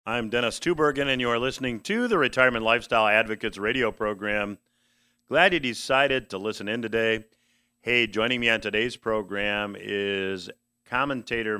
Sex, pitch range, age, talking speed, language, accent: male, 105-130 Hz, 40-59, 150 wpm, English, American